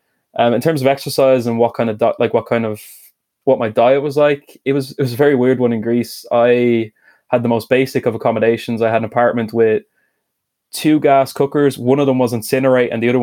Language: English